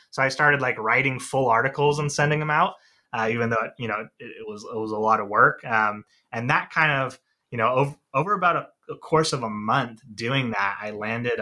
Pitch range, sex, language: 110-130 Hz, male, English